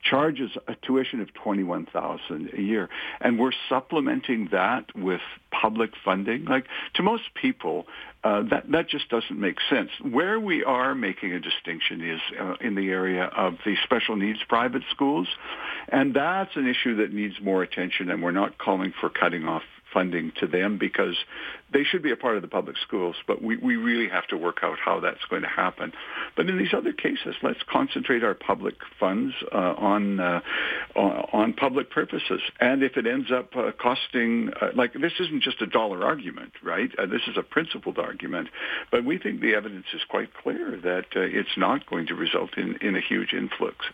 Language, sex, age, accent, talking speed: English, male, 60-79, American, 200 wpm